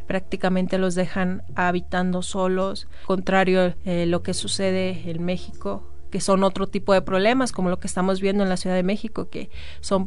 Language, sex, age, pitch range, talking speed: Spanish, female, 30-49, 180-195 Hz, 180 wpm